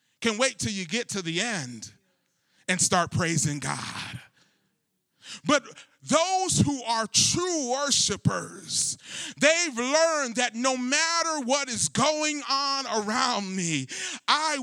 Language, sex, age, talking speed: English, male, 30-49, 125 wpm